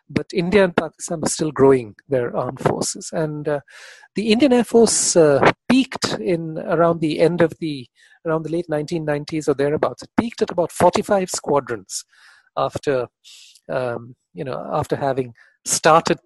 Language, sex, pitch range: English, male, 135-190 Hz